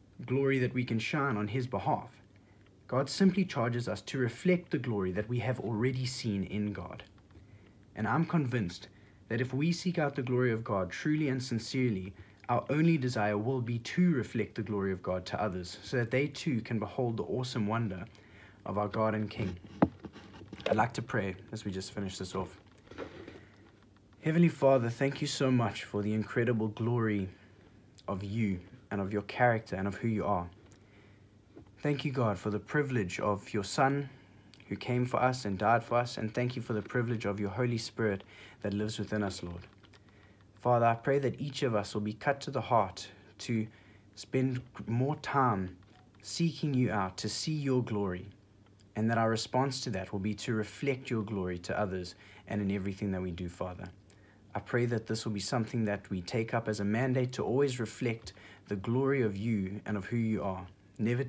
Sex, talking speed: male, 195 wpm